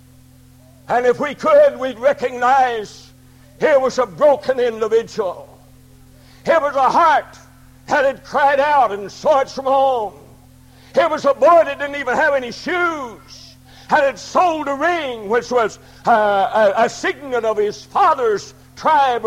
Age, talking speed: 60-79, 150 wpm